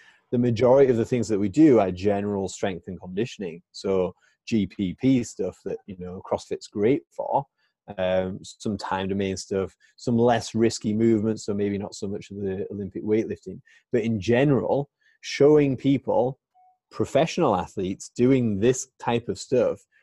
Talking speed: 155 wpm